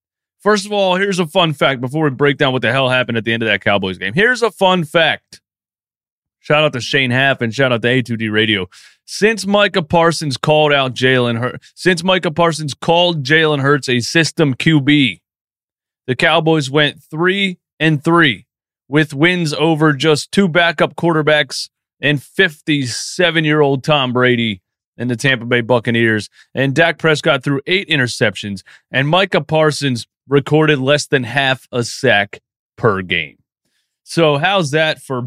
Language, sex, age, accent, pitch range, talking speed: English, male, 30-49, American, 125-160 Hz, 165 wpm